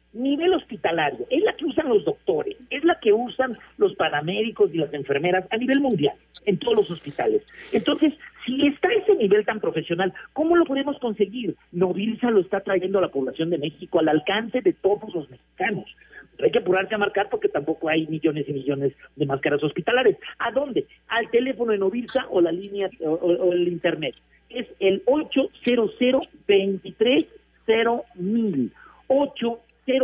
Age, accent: 50-69, Mexican